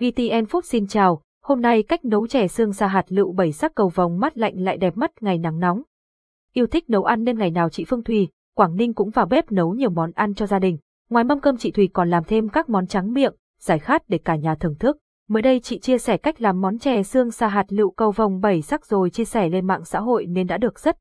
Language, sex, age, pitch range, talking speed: Vietnamese, female, 20-39, 185-230 Hz, 270 wpm